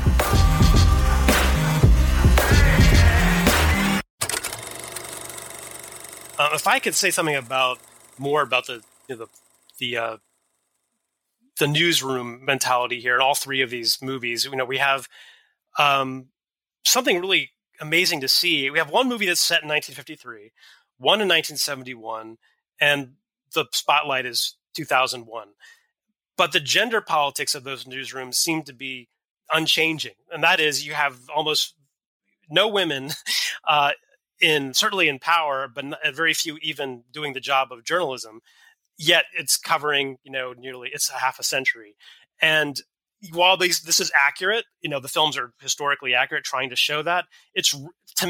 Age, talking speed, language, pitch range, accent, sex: 30-49, 140 wpm, English, 130-165 Hz, American, male